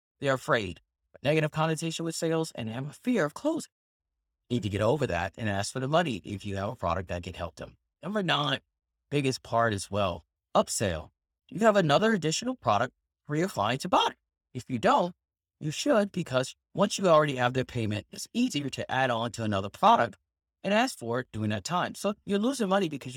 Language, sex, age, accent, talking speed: English, male, 30-49, American, 210 wpm